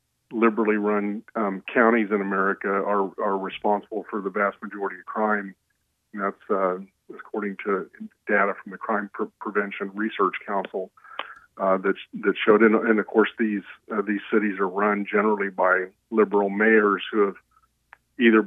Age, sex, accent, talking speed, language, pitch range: 50-69, male, American, 160 wpm, English, 100-110 Hz